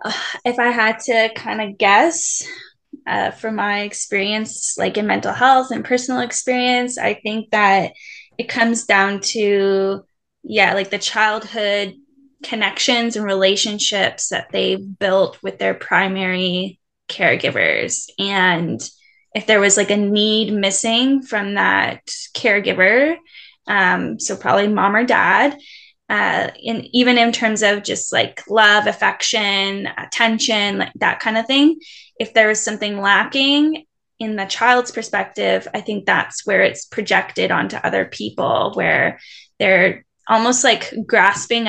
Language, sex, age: English, female, 10-29